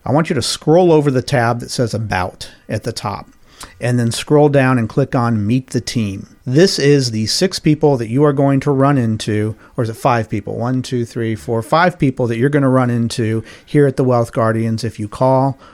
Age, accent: 40-59, American